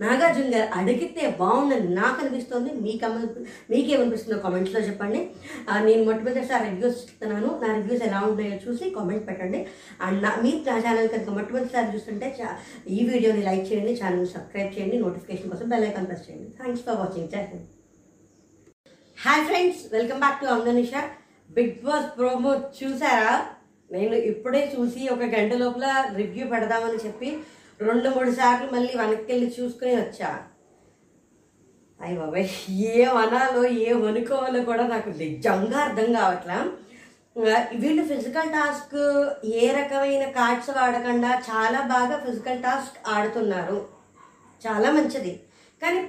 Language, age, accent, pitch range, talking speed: Telugu, 20-39, native, 215-270 Hz, 95 wpm